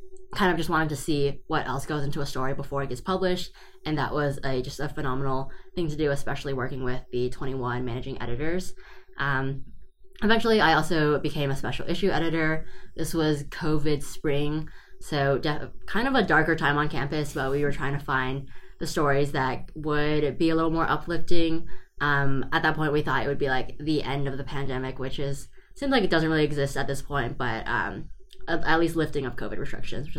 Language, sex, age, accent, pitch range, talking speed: English, female, 10-29, American, 135-160 Hz, 210 wpm